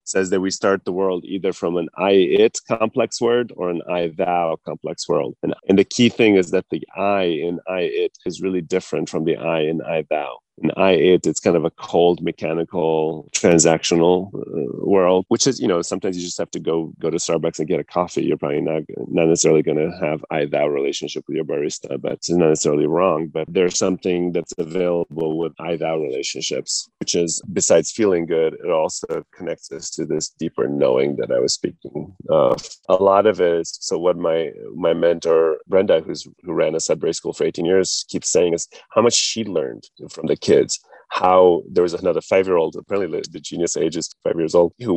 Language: English